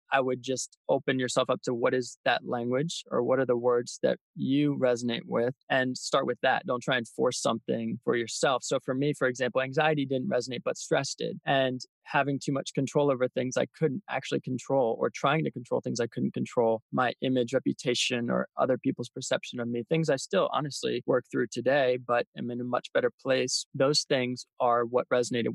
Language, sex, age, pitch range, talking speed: English, male, 20-39, 120-135 Hz, 210 wpm